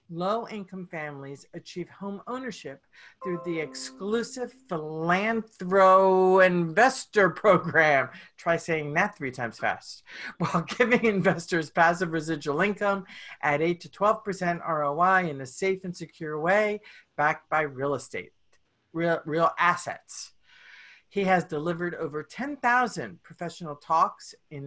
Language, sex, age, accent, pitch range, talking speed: English, female, 50-69, American, 150-200 Hz, 120 wpm